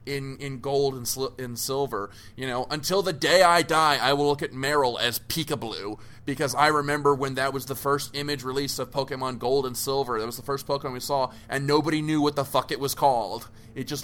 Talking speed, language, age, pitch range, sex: 230 wpm, English, 20-39, 120-150 Hz, male